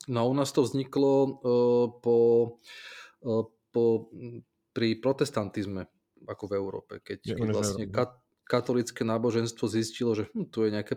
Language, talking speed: Slovak, 140 wpm